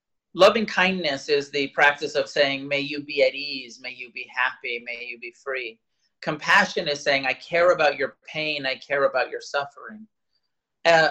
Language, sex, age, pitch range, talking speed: English, male, 30-49, 135-185 Hz, 185 wpm